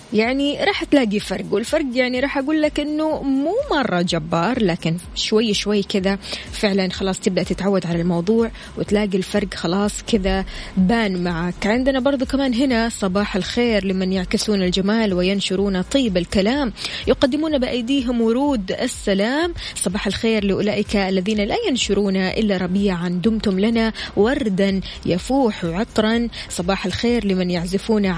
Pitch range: 190-240 Hz